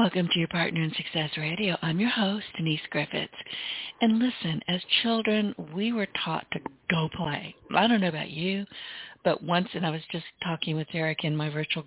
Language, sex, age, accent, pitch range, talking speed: English, female, 60-79, American, 155-205 Hz, 195 wpm